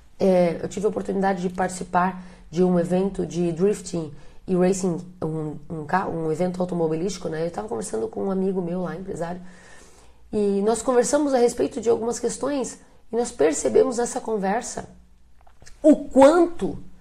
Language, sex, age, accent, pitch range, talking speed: Portuguese, female, 30-49, Brazilian, 185-265 Hz, 160 wpm